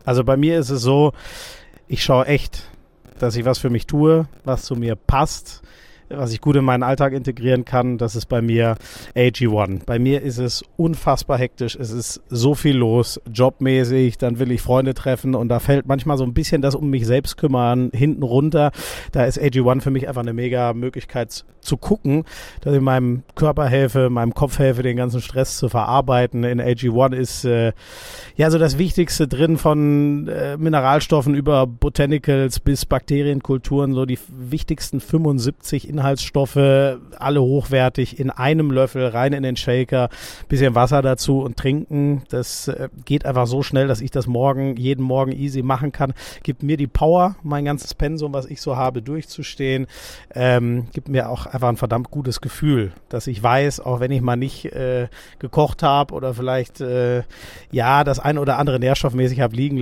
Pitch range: 125-145 Hz